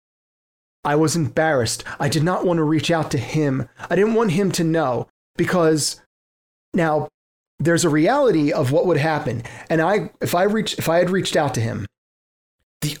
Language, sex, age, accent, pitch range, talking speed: English, male, 30-49, American, 135-175 Hz, 185 wpm